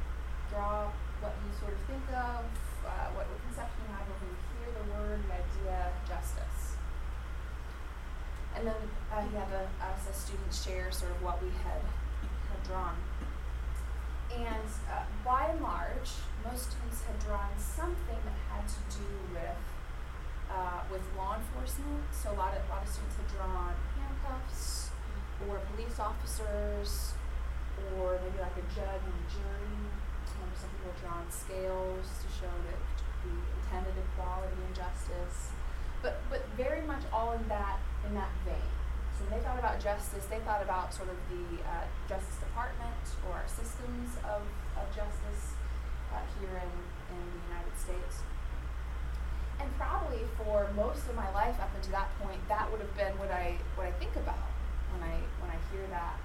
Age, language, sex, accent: 20-39, English, female, American